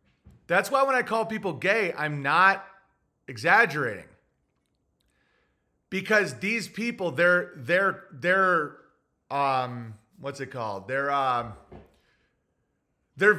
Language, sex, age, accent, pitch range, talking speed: English, male, 30-49, American, 145-190 Hz, 105 wpm